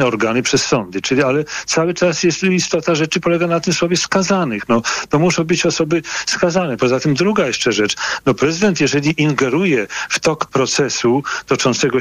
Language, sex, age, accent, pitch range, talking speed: Polish, male, 40-59, native, 125-165 Hz, 170 wpm